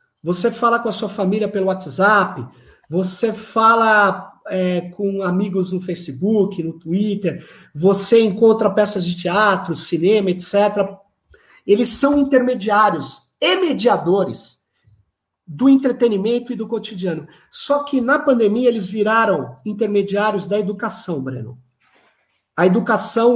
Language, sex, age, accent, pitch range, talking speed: Portuguese, male, 50-69, Brazilian, 180-225 Hz, 115 wpm